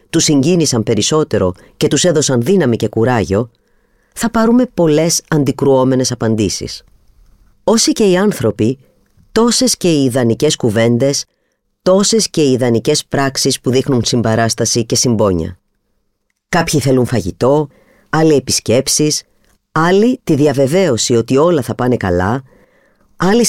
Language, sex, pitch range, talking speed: Greek, female, 110-160 Hz, 120 wpm